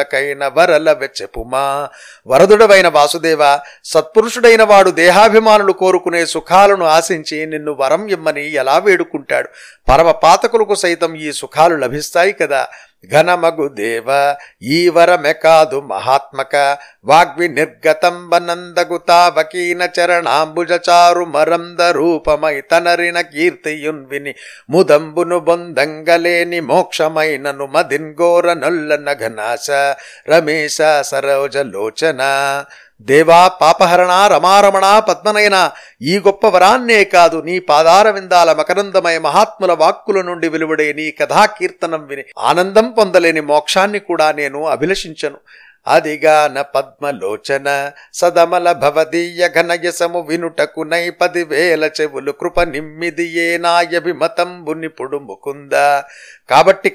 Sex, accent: male, native